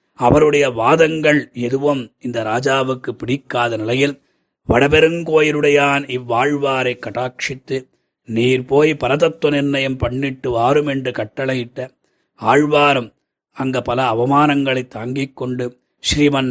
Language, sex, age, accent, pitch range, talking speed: Tamil, male, 30-49, native, 125-145 Hz, 85 wpm